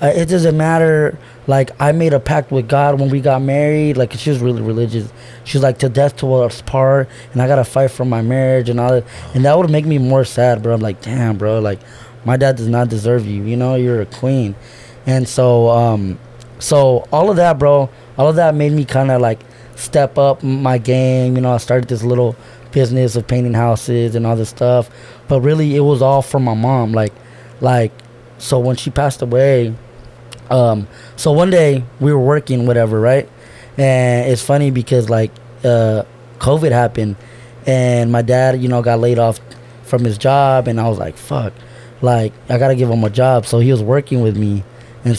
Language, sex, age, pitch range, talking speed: English, male, 20-39, 120-130 Hz, 210 wpm